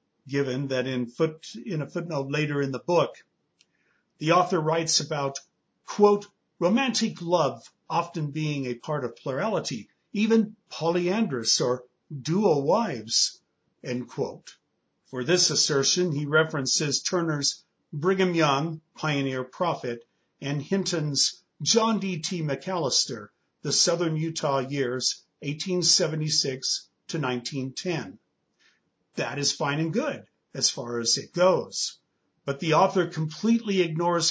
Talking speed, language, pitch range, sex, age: 120 wpm, English, 140-175 Hz, male, 50-69